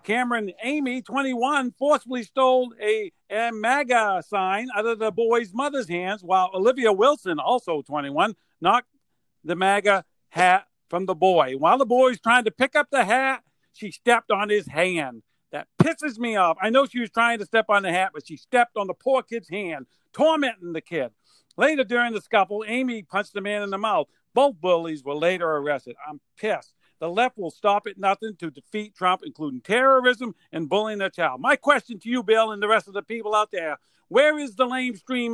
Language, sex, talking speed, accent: English, male, 200 wpm, American